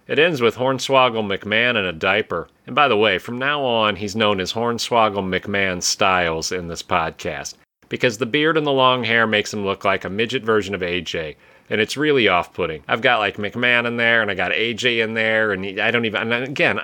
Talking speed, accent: 220 wpm, American